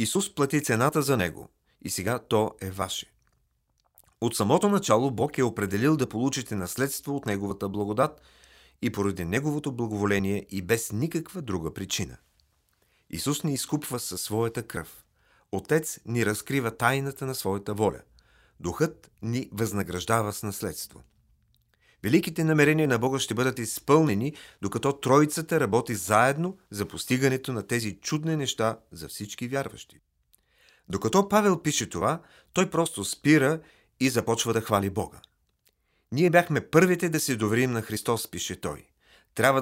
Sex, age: male, 40-59